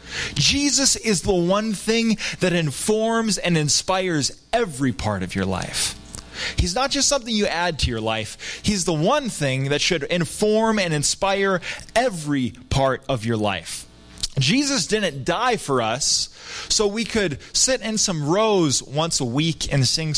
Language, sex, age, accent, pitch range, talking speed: English, male, 30-49, American, 120-185 Hz, 160 wpm